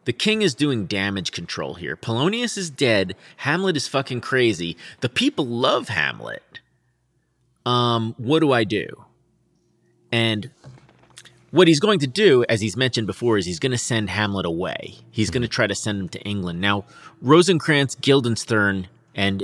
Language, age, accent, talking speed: English, 30-49, American, 165 wpm